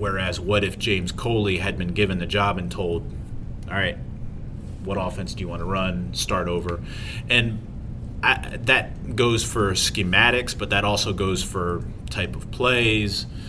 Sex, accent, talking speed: male, American, 165 wpm